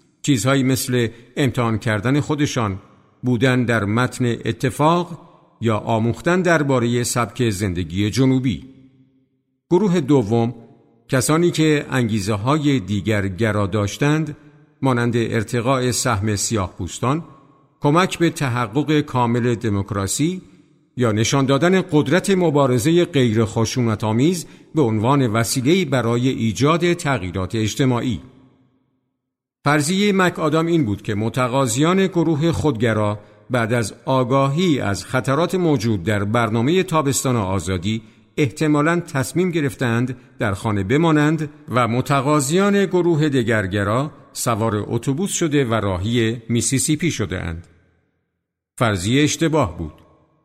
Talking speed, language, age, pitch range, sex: 100 wpm, Persian, 50-69, 115-150 Hz, male